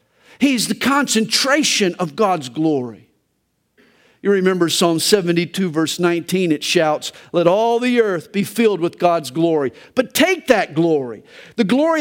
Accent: American